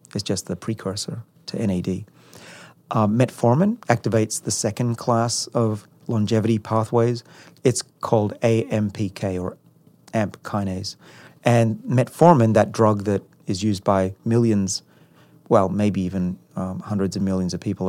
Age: 30-49